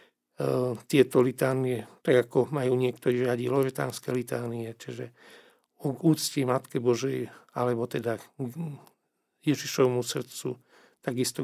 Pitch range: 125-145 Hz